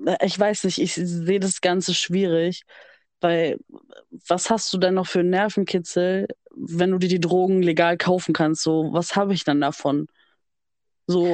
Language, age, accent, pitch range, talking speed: German, 20-39, German, 175-200 Hz, 170 wpm